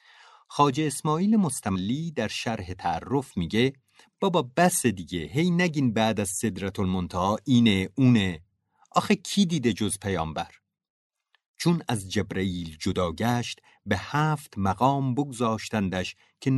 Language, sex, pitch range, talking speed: Persian, male, 105-160 Hz, 115 wpm